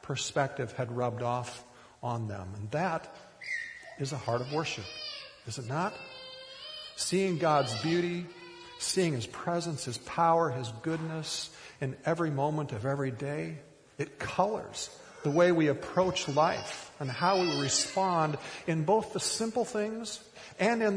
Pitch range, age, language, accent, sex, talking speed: 125-165 Hz, 50-69, English, American, male, 145 wpm